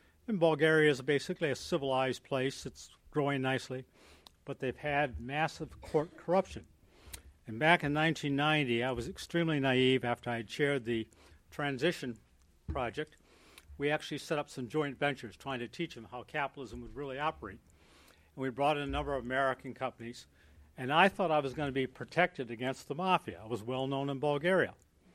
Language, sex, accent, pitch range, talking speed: English, male, American, 120-155 Hz, 175 wpm